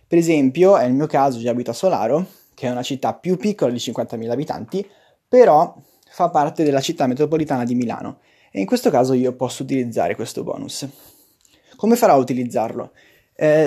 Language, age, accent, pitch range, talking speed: Italian, 20-39, native, 130-160 Hz, 175 wpm